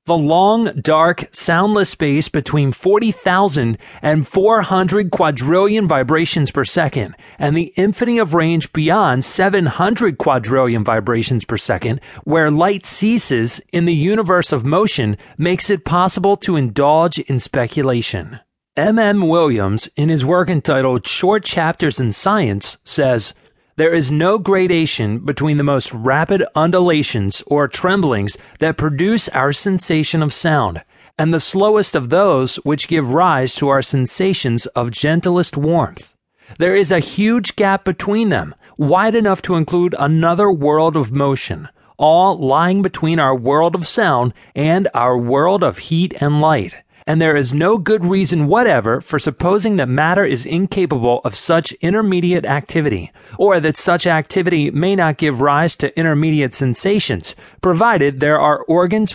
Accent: American